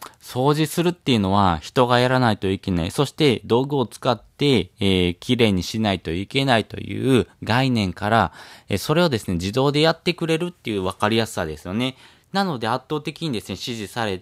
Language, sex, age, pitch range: Japanese, male, 20-39, 100-145 Hz